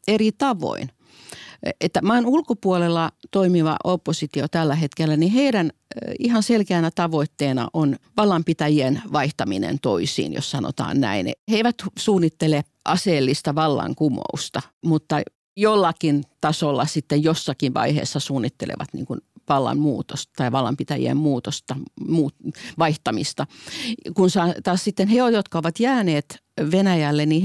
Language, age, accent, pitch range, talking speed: Finnish, 50-69, native, 150-200 Hz, 105 wpm